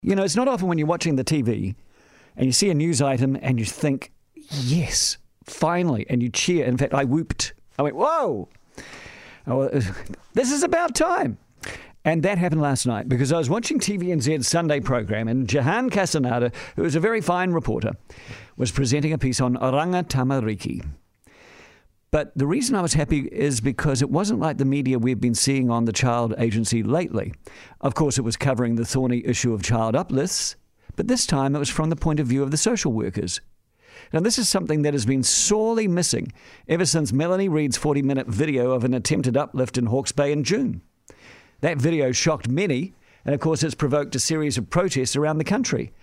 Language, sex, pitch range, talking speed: English, male, 130-175 Hz, 195 wpm